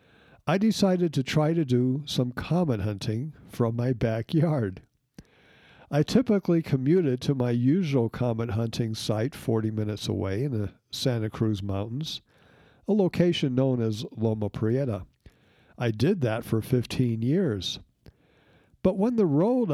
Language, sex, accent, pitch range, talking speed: English, male, American, 115-150 Hz, 135 wpm